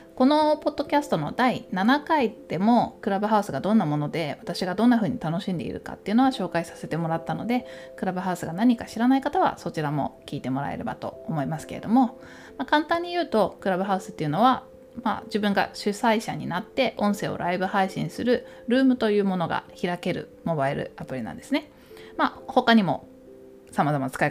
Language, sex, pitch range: Japanese, female, 155-250 Hz